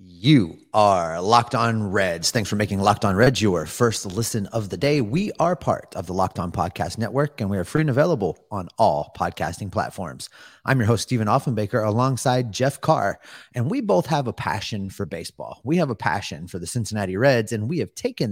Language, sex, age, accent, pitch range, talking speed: English, male, 30-49, American, 105-135 Hz, 210 wpm